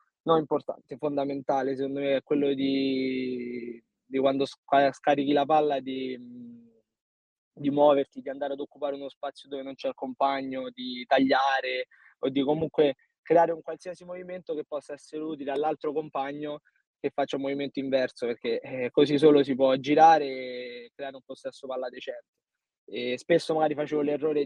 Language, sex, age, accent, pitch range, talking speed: Italian, male, 20-39, native, 130-155 Hz, 155 wpm